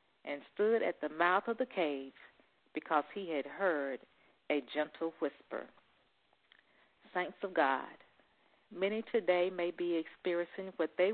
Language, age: English, 40-59